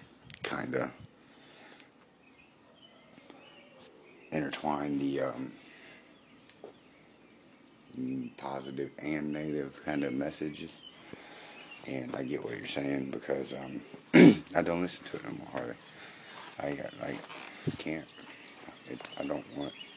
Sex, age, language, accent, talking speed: male, 50-69, English, American, 100 wpm